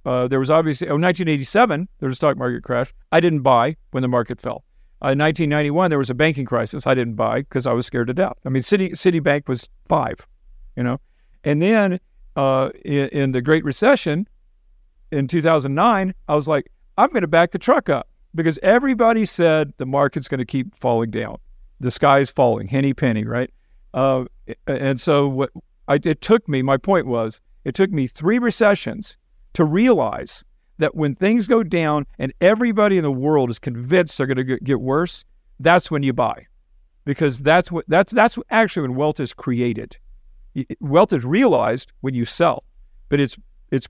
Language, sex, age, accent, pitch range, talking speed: English, male, 50-69, American, 130-170 Hz, 190 wpm